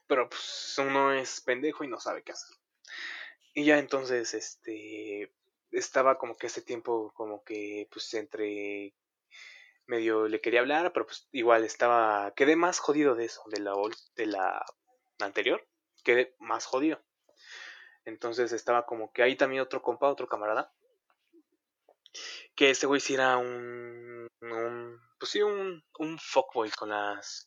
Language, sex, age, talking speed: Spanish, male, 20-39, 150 wpm